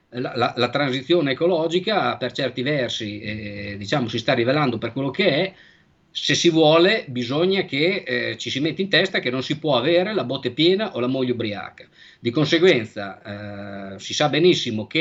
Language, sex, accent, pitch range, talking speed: Italian, male, native, 120-170 Hz, 190 wpm